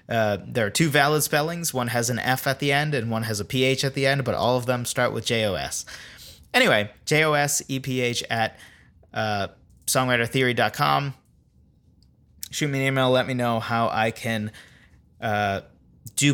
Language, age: English, 30-49